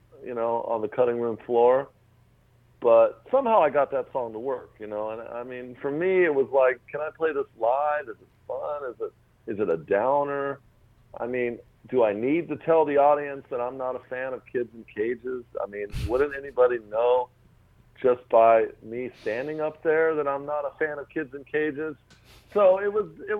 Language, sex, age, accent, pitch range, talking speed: English, male, 50-69, American, 115-150 Hz, 210 wpm